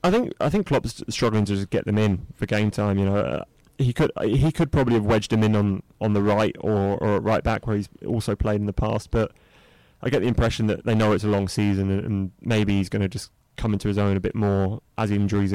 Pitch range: 100-115 Hz